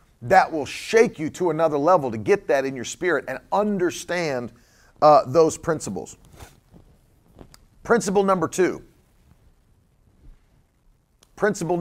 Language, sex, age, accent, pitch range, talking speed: English, male, 40-59, American, 120-195 Hz, 110 wpm